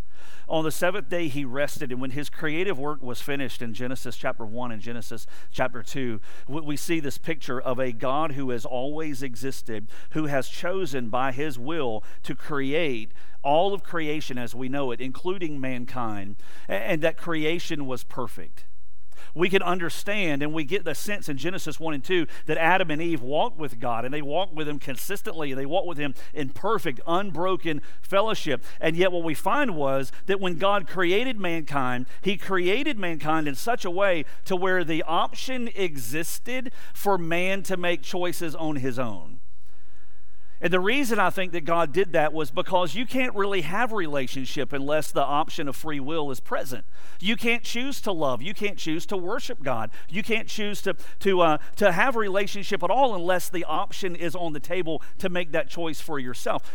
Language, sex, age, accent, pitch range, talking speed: English, male, 50-69, American, 135-185 Hz, 190 wpm